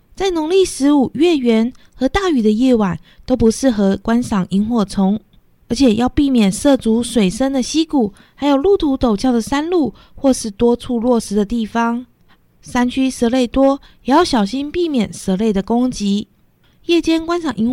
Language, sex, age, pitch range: Chinese, female, 20-39, 215-265 Hz